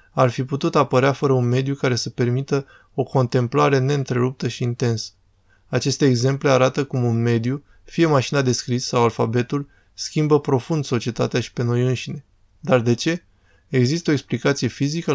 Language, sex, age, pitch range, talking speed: Romanian, male, 20-39, 115-140 Hz, 160 wpm